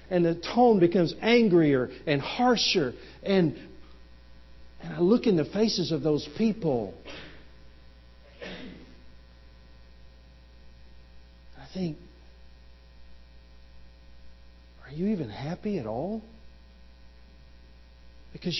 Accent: American